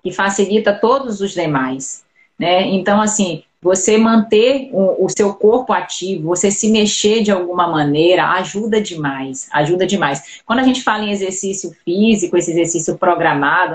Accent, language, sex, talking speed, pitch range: Brazilian, Portuguese, female, 155 wpm, 175-215 Hz